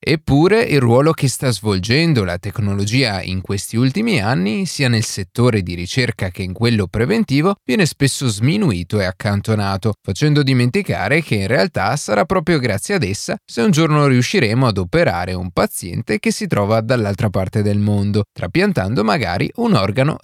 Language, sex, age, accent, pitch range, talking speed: Italian, male, 30-49, native, 100-150 Hz, 165 wpm